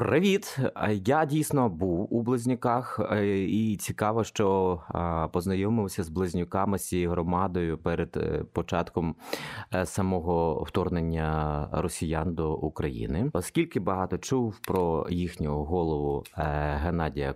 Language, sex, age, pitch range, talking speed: Ukrainian, male, 30-49, 80-110 Hz, 100 wpm